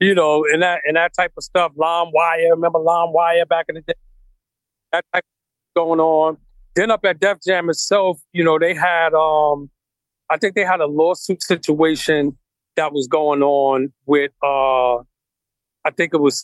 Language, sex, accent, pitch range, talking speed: English, male, American, 140-170 Hz, 190 wpm